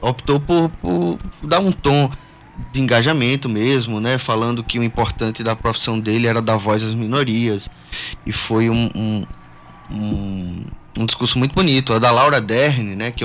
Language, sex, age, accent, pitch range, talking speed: Portuguese, male, 20-39, Brazilian, 110-150 Hz, 170 wpm